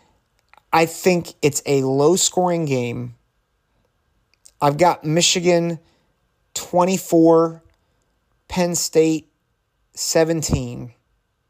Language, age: English, 30-49